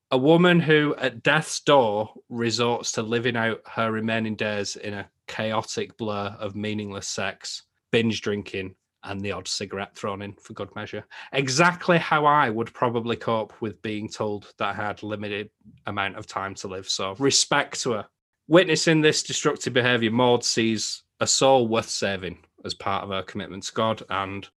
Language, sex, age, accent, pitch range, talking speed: English, male, 30-49, British, 100-125 Hz, 175 wpm